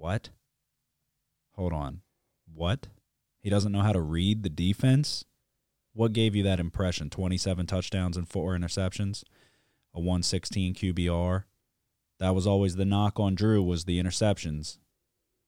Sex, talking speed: male, 135 wpm